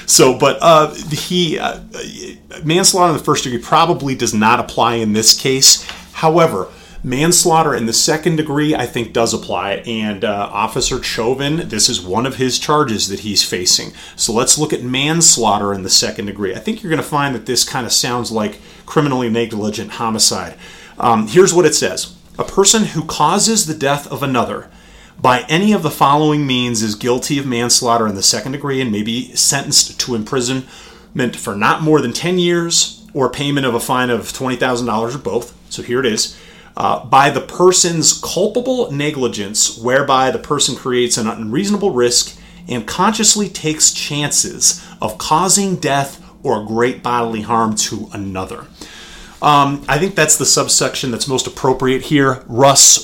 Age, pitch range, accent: 30-49, 115-155 Hz, American